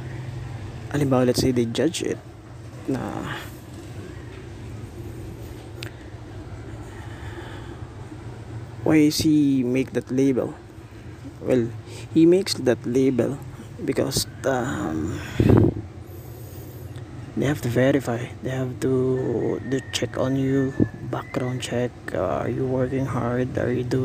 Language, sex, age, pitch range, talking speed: Filipino, male, 20-39, 110-130 Hz, 100 wpm